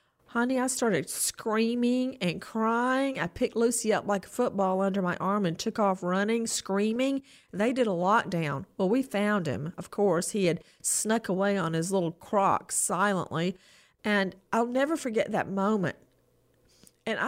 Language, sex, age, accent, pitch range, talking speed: English, female, 40-59, American, 190-250 Hz, 165 wpm